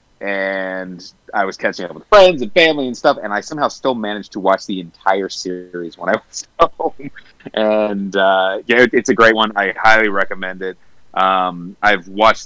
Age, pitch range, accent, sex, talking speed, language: 30-49, 85-105 Hz, American, male, 190 wpm, English